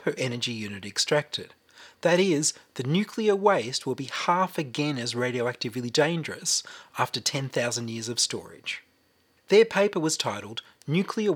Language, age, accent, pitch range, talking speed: English, 30-49, Australian, 120-180 Hz, 130 wpm